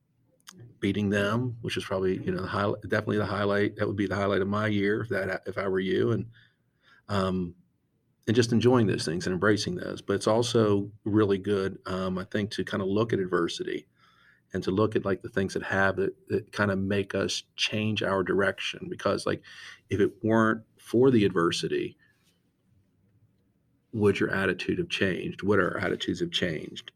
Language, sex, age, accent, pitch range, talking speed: English, male, 40-59, American, 95-110 Hz, 190 wpm